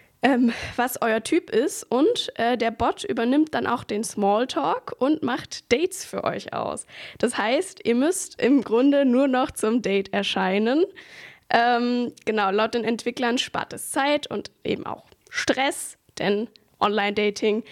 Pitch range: 215-270 Hz